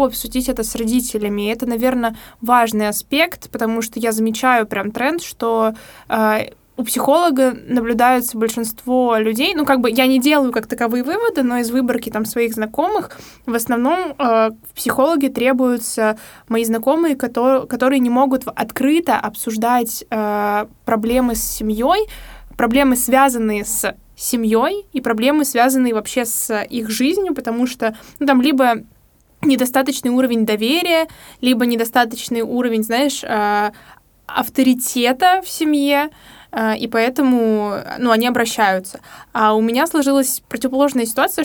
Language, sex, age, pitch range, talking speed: Russian, female, 20-39, 225-265 Hz, 130 wpm